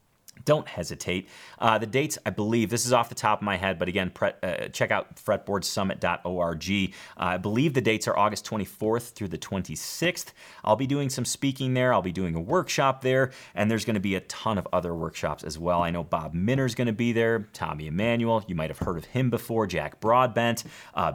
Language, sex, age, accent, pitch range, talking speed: English, male, 30-49, American, 85-125 Hz, 215 wpm